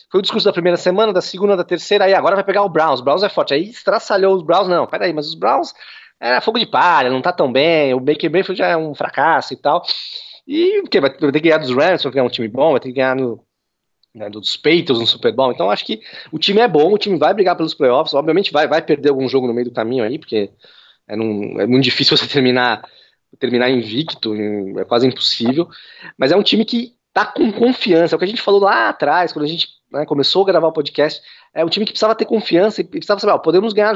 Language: Portuguese